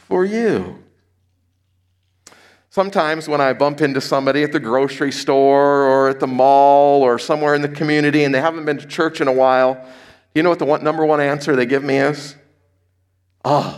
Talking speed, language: 185 wpm, English